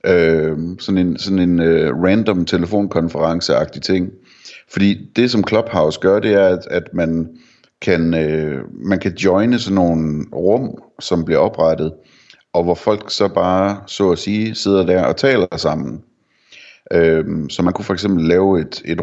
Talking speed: 165 wpm